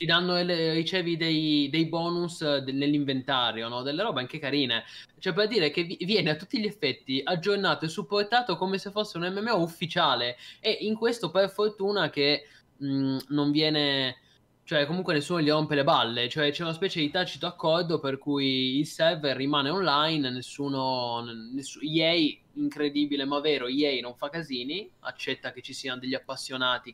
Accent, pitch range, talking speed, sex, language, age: native, 130-165 Hz, 165 wpm, male, Italian, 20-39